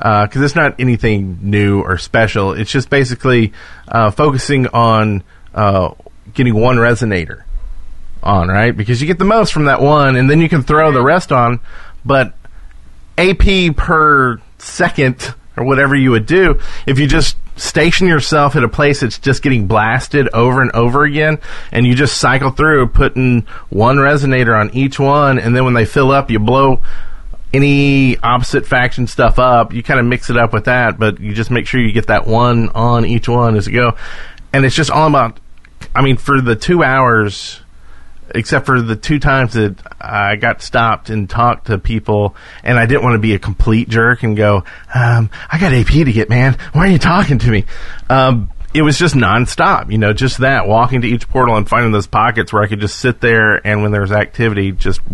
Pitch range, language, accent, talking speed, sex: 105-135 Hz, English, American, 200 wpm, male